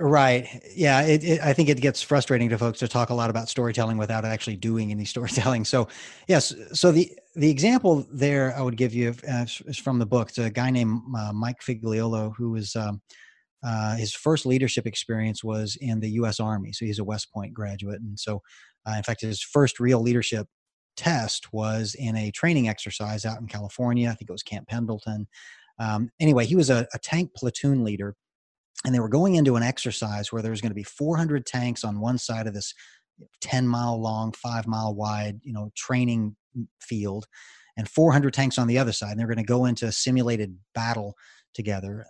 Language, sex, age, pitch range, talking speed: English, male, 30-49, 110-125 Hz, 200 wpm